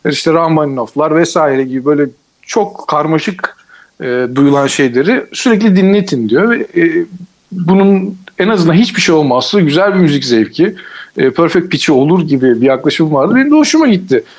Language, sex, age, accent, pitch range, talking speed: Turkish, male, 50-69, native, 165-210 Hz, 155 wpm